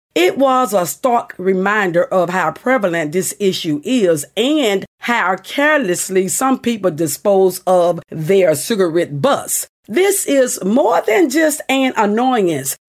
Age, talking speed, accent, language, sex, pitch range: 50-69, 130 wpm, American, English, female, 185-265 Hz